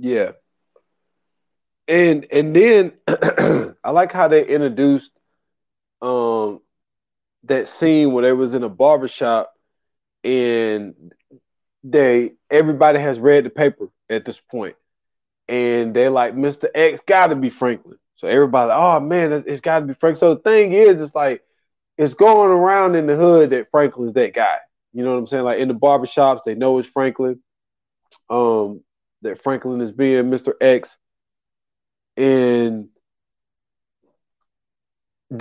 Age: 20-39